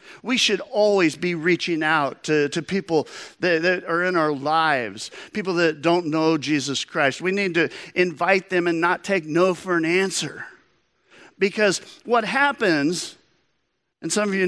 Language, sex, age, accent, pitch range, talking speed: English, male, 50-69, American, 125-175 Hz, 165 wpm